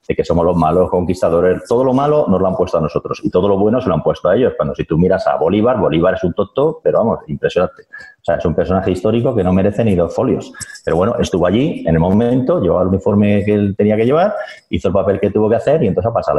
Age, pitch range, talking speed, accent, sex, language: 30-49, 90-115 Hz, 280 wpm, Spanish, male, Spanish